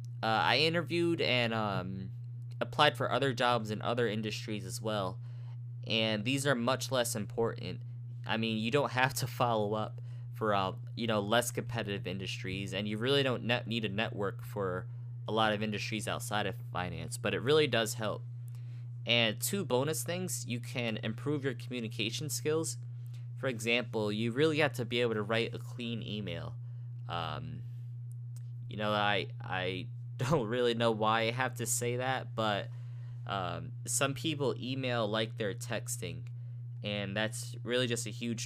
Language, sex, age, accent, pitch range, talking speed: English, male, 20-39, American, 110-120 Hz, 165 wpm